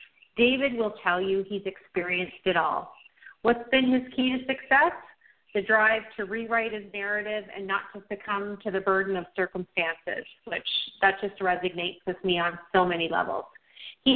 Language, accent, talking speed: English, American, 170 wpm